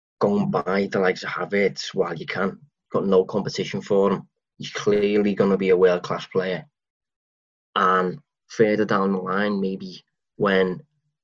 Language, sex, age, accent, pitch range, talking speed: English, male, 20-39, British, 95-145 Hz, 155 wpm